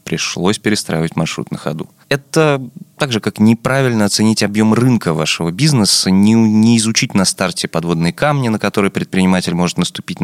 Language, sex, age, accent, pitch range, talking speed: Russian, male, 20-39, native, 90-130 Hz, 160 wpm